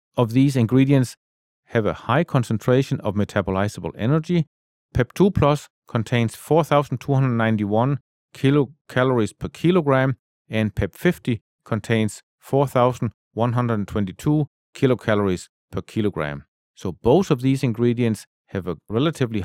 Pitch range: 105-135 Hz